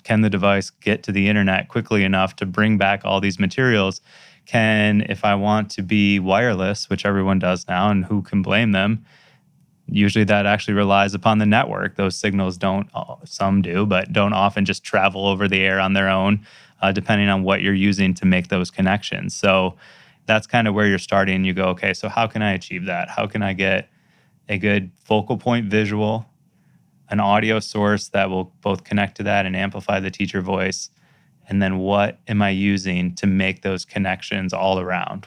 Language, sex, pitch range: English, male, 95-105 Hz